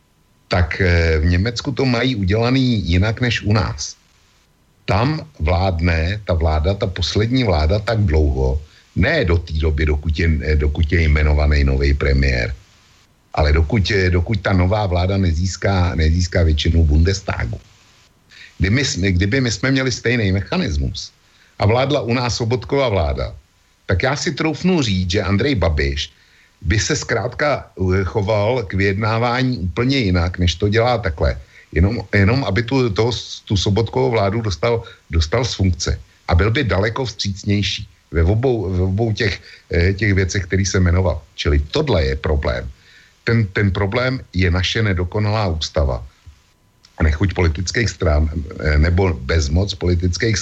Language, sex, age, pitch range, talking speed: Slovak, male, 60-79, 85-115 Hz, 140 wpm